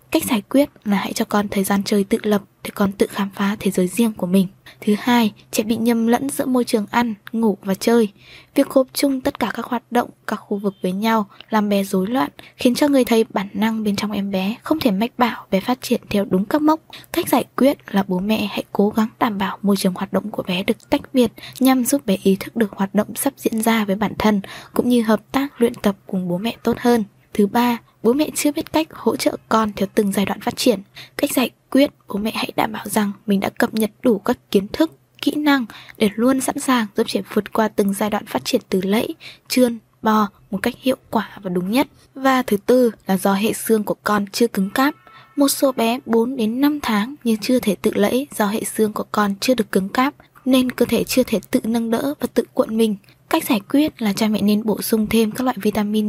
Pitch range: 205-255 Hz